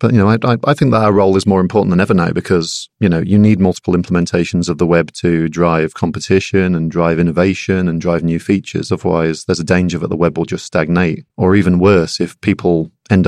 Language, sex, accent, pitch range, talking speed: Russian, male, British, 85-95 Hz, 230 wpm